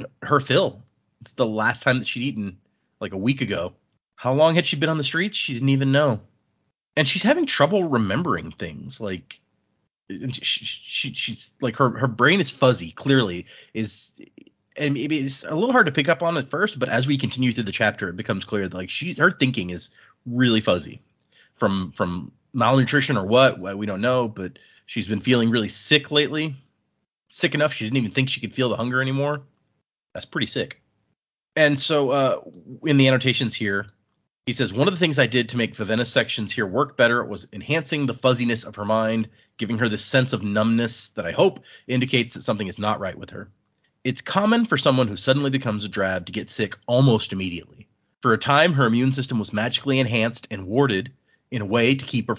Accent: American